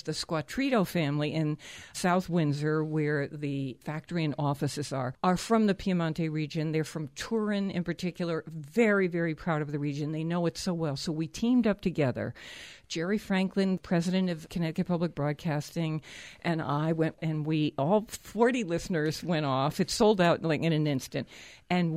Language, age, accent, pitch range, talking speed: English, 60-79, American, 155-205 Hz, 170 wpm